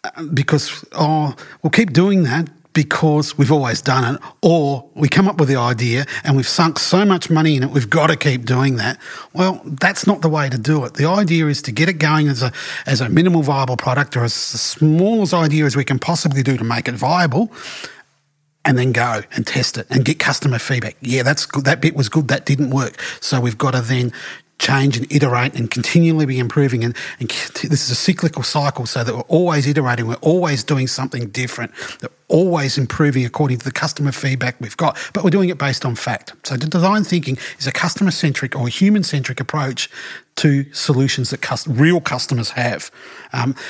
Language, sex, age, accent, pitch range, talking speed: English, male, 40-59, Australian, 130-155 Hz, 205 wpm